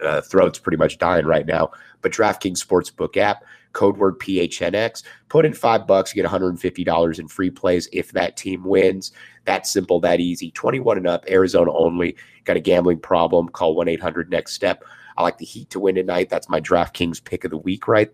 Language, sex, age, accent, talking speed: English, male, 30-49, American, 190 wpm